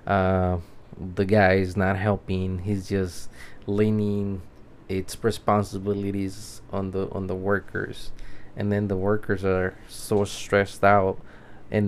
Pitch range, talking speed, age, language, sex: 95-115 Hz, 125 wpm, 20-39, English, male